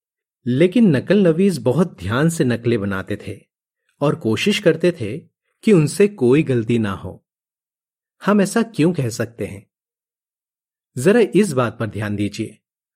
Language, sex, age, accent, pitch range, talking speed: Hindi, male, 40-59, native, 120-180 Hz, 145 wpm